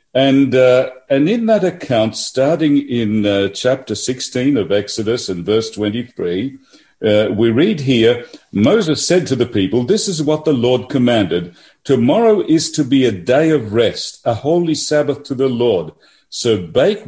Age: 50-69